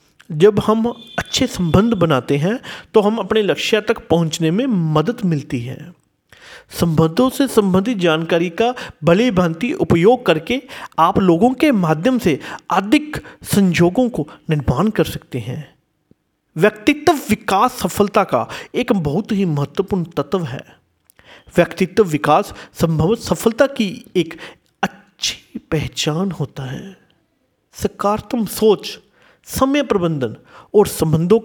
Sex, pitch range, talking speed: male, 160-235 Hz, 120 wpm